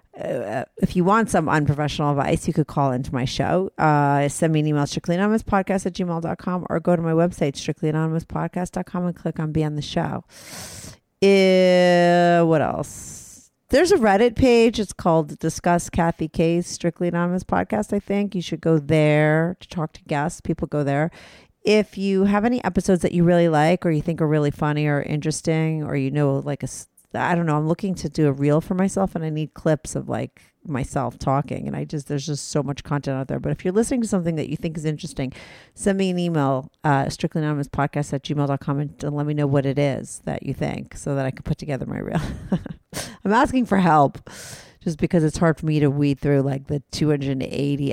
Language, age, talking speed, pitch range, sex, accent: English, 40-59, 210 wpm, 145-180 Hz, female, American